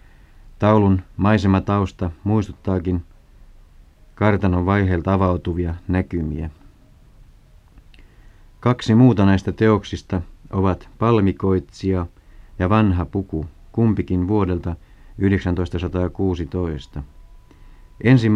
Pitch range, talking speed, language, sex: 90-105 Hz, 65 wpm, Finnish, male